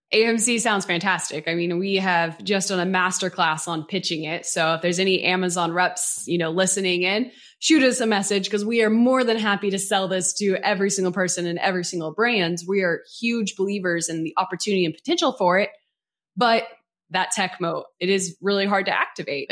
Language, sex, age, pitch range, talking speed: English, female, 20-39, 170-205 Hz, 205 wpm